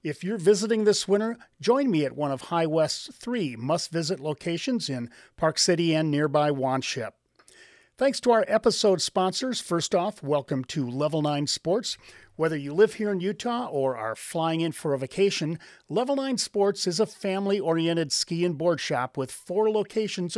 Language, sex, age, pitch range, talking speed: English, male, 50-69, 140-200 Hz, 175 wpm